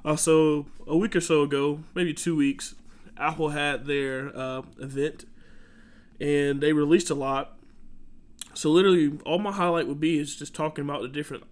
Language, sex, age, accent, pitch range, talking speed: English, male, 20-39, American, 135-150 Hz, 170 wpm